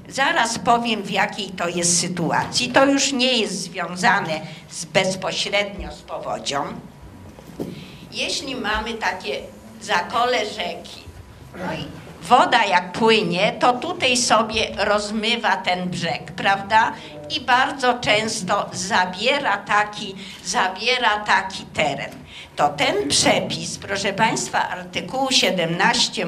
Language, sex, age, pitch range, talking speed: Polish, female, 50-69, 180-235 Hz, 110 wpm